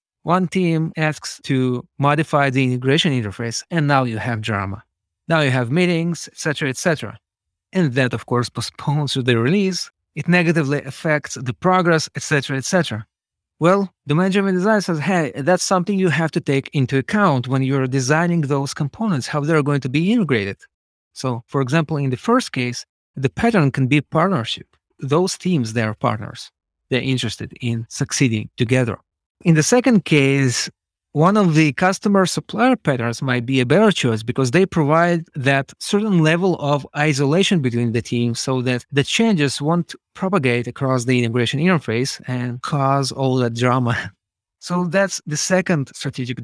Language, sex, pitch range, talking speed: English, male, 125-165 Hz, 170 wpm